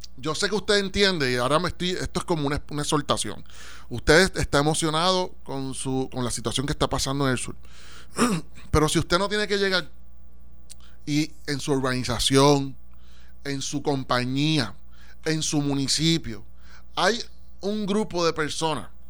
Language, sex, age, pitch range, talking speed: Spanish, male, 30-49, 125-180 Hz, 160 wpm